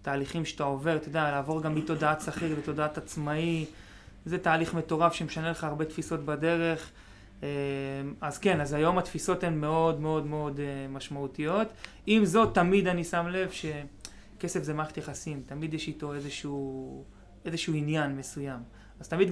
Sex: male